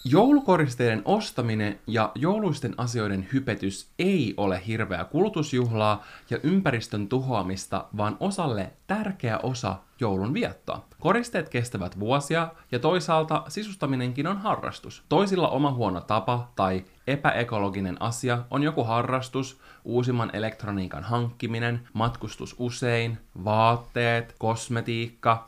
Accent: native